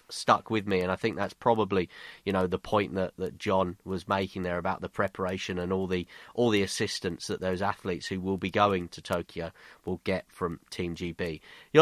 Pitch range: 95-115 Hz